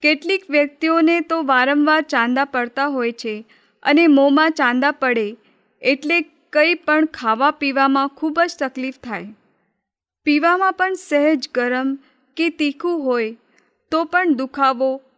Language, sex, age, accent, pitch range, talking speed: Gujarati, female, 30-49, native, 255-305 Hz, 105 wpm